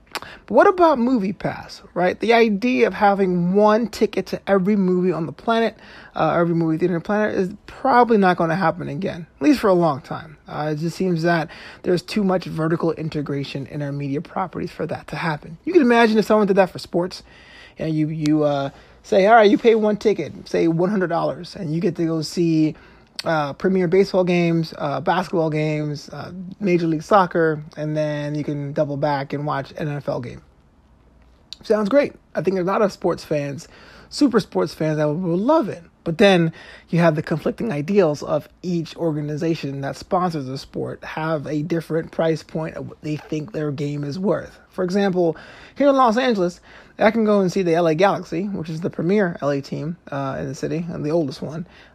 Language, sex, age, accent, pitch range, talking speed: English, male, 30-49, American, 155-195 Hz, 205 wpm